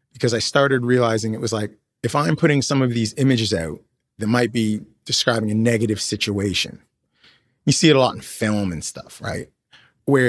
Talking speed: 190 wpm